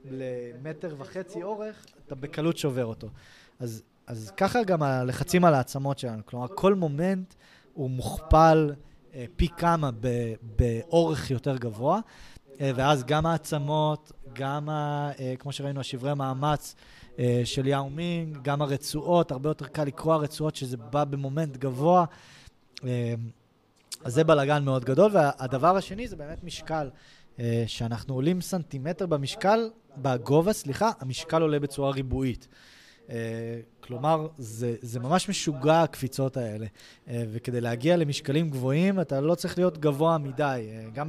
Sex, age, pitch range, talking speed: male, 20-39, 125-165 Hz, 135 wpm